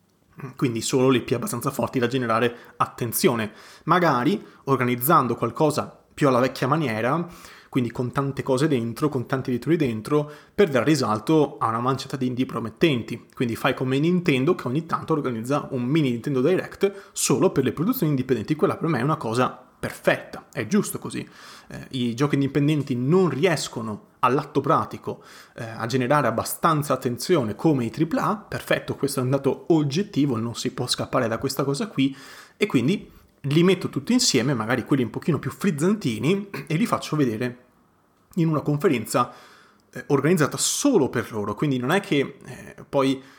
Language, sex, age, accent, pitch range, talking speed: Italian, male, 30-49, native, 120-150 Hz, 170 wpm